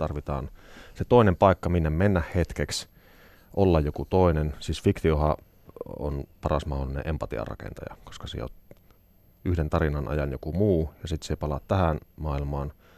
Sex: male